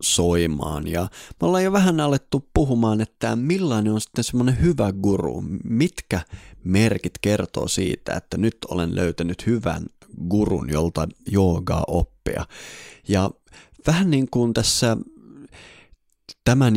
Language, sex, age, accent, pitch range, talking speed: Finnish, male, 20-39, native, 90-120 Hz, 120 wpm